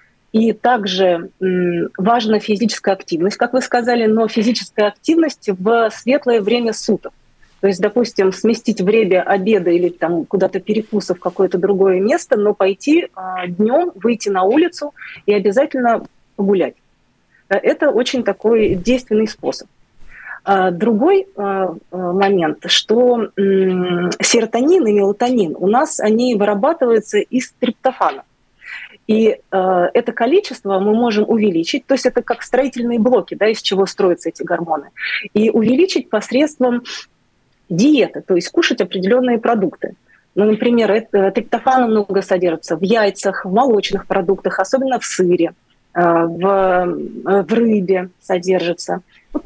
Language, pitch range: Russian, 195-245 Hz